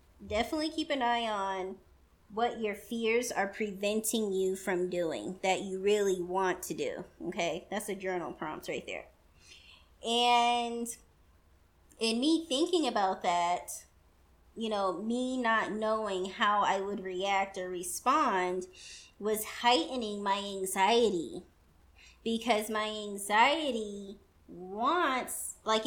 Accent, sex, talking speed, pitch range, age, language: American, female, 120 wpm, 190-235 Hz, 20-39, English